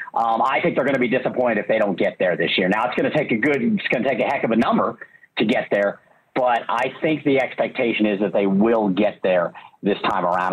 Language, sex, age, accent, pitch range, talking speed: English, male, 50-69, American, 125-160 Hz, 275 wpm